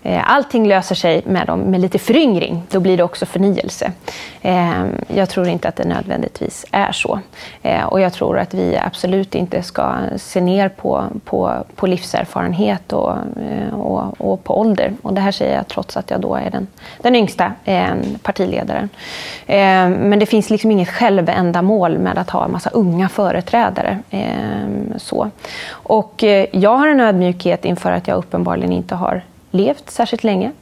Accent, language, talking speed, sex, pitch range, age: native, Swedish, 155 wpm, female, 180-215 Hz, 20-39